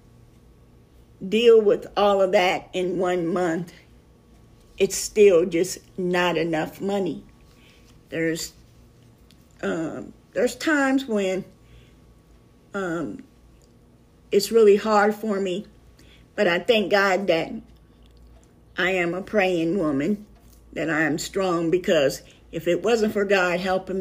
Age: 50-69